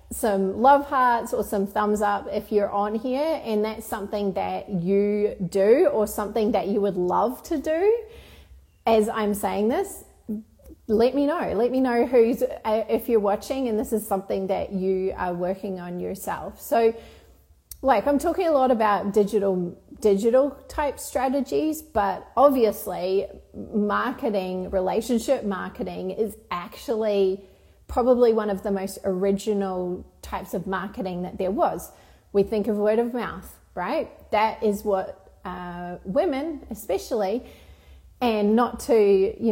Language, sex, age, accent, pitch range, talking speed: English, female, 30-49, Australian, 195-250 Hz, 145 wpm